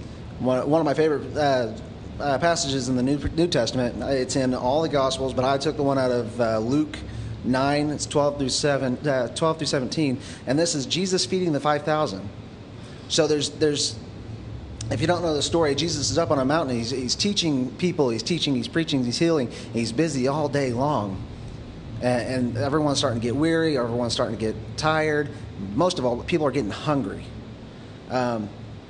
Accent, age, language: American, 30-49, English